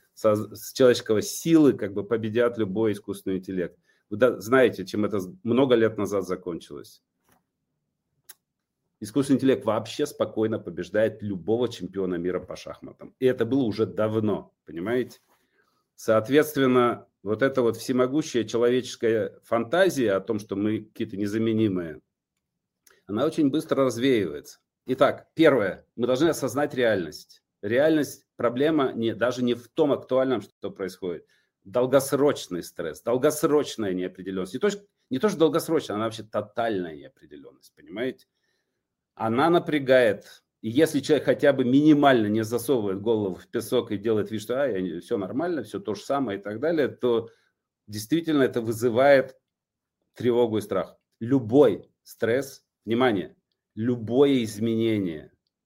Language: Russian